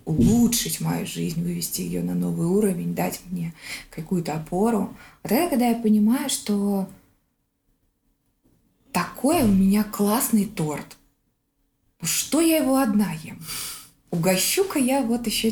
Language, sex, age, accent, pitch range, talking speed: Russian, female, 20-39, native, 155-215 Hz, 125 wpm